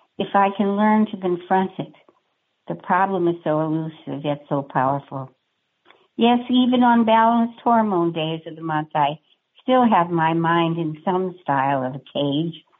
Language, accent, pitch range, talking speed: English, American, 160-205 Hz, 165 wpm